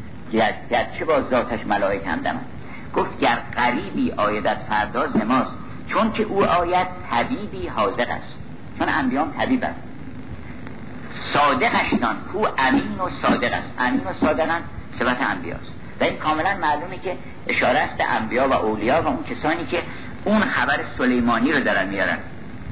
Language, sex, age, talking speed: Persian, male, 50-69, 145 wpm